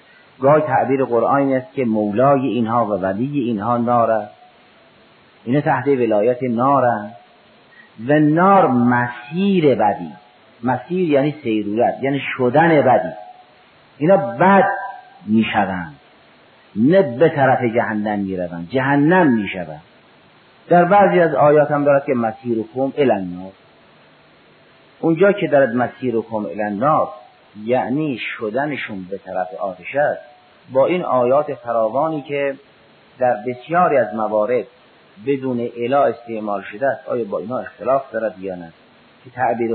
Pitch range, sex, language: 110-145 Hz, male, Persian